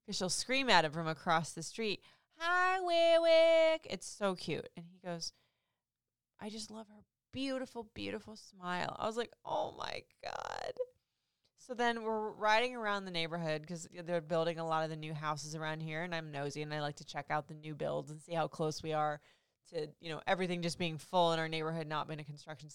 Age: 20-39